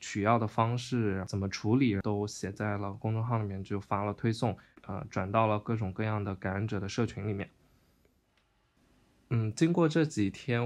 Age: 20-39